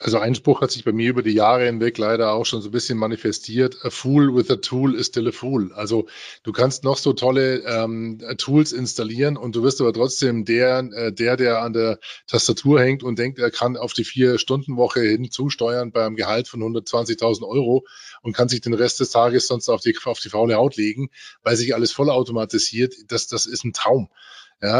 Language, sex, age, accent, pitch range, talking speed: German, male, 20-39, German, 115-135 Hz, 220 wpm